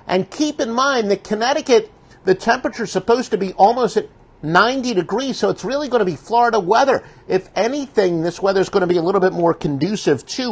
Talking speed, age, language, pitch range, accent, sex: 215 wpm, 50-69, English, 155-230 Hz, American, male